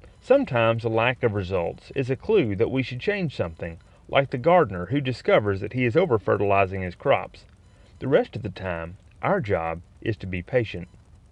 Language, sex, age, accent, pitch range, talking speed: English, male, 30-49, American, 95-150 Hz, 185 wpm